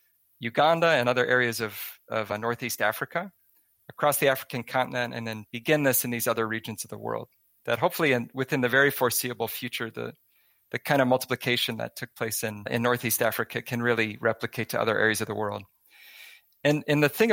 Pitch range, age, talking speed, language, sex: 115-140 Hz, 40-59, 195 wpm, English, male